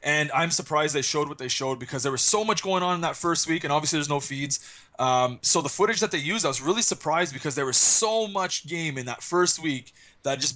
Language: English